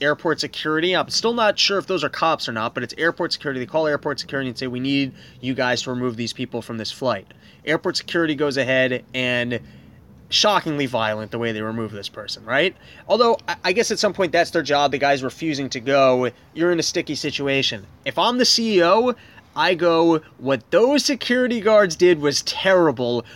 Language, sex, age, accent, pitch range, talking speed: English, male, 20-39, American, 135-185 Hz, 205 wpm